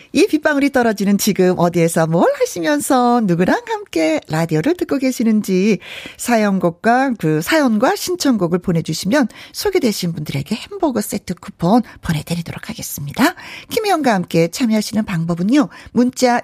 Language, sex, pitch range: Korean, female, 185-295 Hz